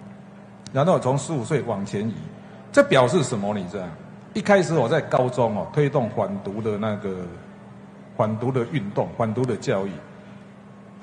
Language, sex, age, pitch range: Chinese, male, 50-69, 120-190 Hz